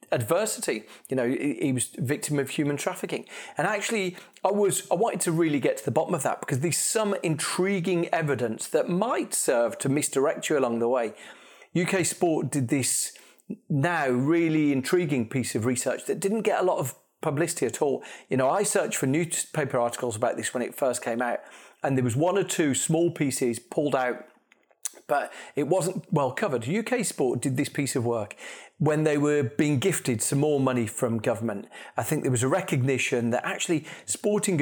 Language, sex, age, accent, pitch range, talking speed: English, male, 40-59, British, 130-185 Hz, 200 wpm